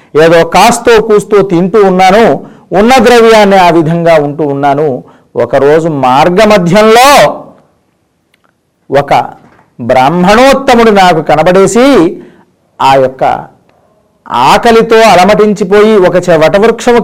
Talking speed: 80 wpm